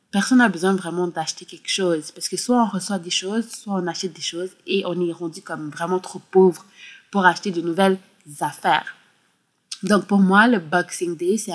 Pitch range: 175-210 Hz